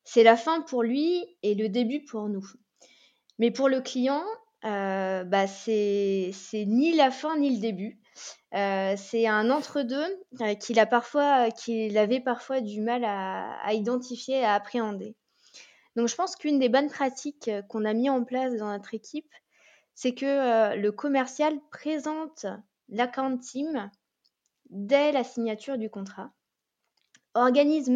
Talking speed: 150 wpm